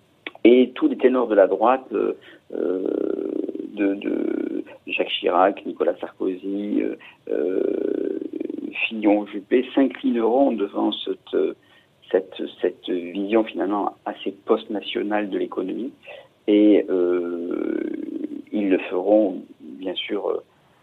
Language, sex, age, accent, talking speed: French, male, 50-69, French, 95 wpm